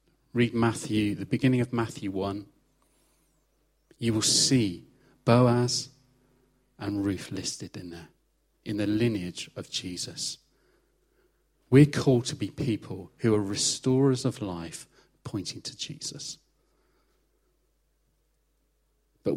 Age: 40-59